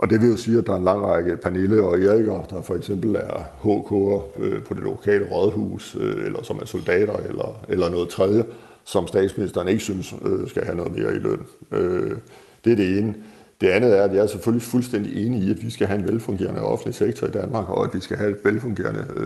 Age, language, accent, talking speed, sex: 60-79, Danish, native, 220 wpm, male